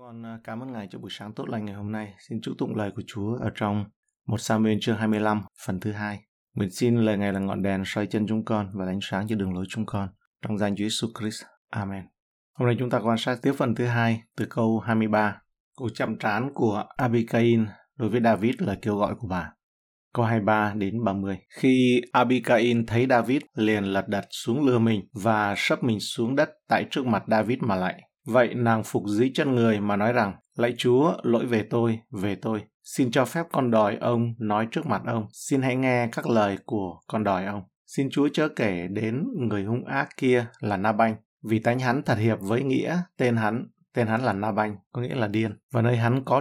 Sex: male